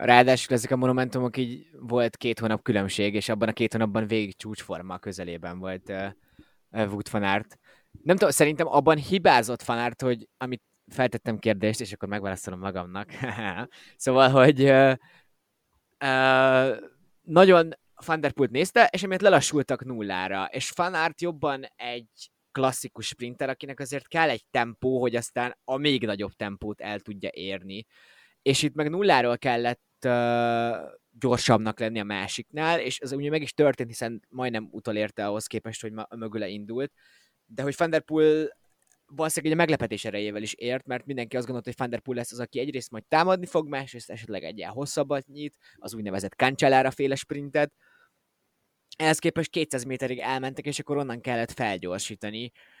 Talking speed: 150 wpm